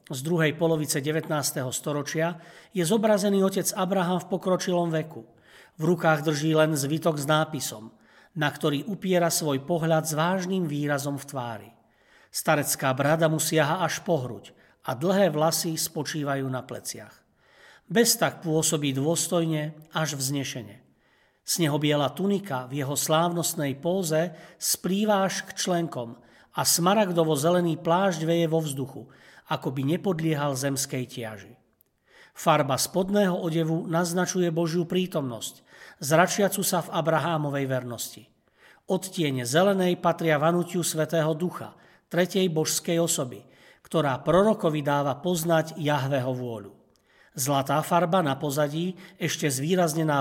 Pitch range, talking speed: 145-180 Hz, 120 wpm